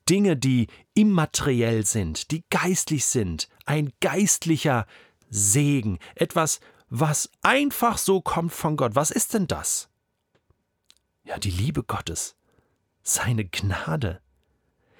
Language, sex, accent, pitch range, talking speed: German, male, German, 115-170 Hz, 110 wpm